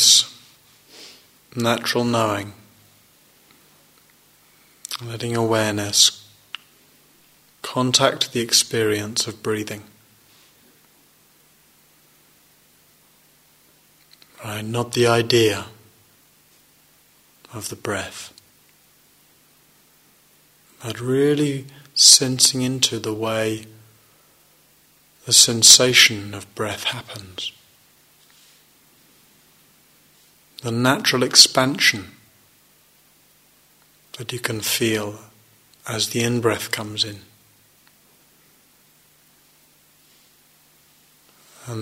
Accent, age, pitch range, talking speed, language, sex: British, 30-49, 110-125 Hz, 55 wpm, English, male